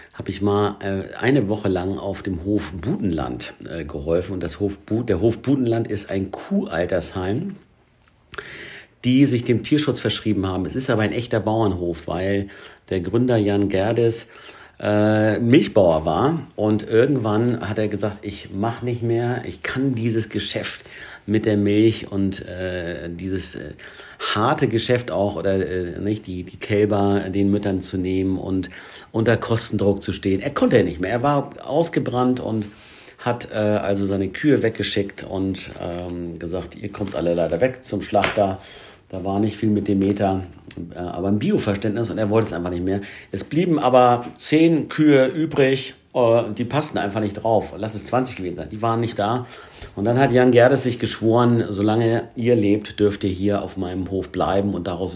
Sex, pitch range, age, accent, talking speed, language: male, 95-115 Hz, 50-69, German, 170 wpm, German